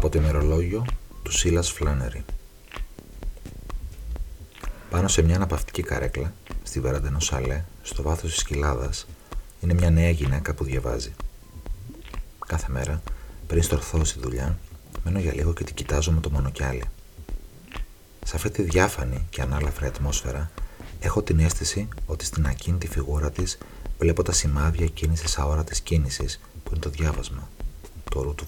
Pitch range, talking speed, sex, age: 70-85 Hz, 140 wpm, male, 30-49